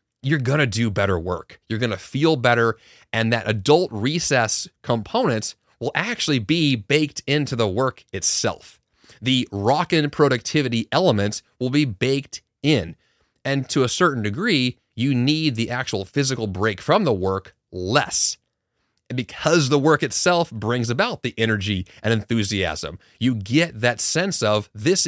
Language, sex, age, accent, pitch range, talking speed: English, male, 30-49, American, 110-150 Hz, 145 wpm